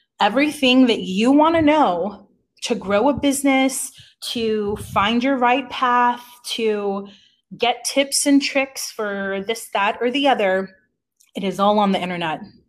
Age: 20-39